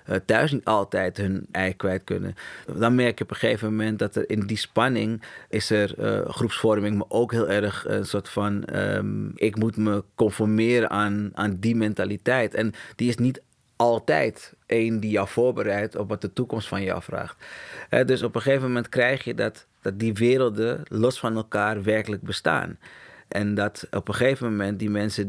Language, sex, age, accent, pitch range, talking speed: Dutch, male, 30-49, Dutch, 100-120 Hz, 185 wpm